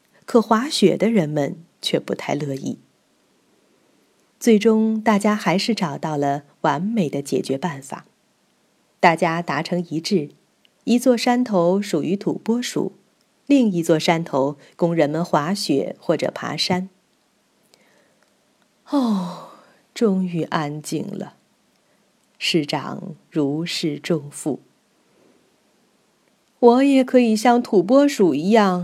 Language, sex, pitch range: Chinese, female, 165-240 Hz